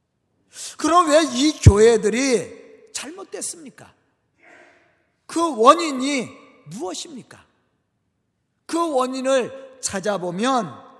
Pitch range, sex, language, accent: 230-300 Hz, male, Korean, native